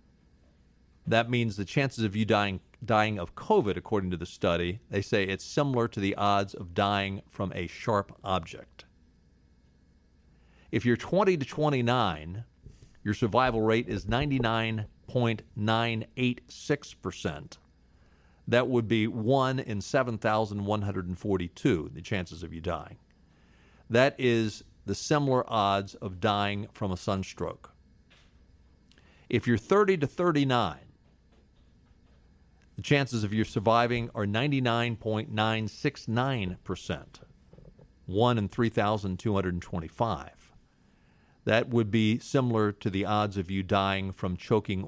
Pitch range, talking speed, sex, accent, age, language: 90-120 Hz, 110 wpm, male, American, 50-69, English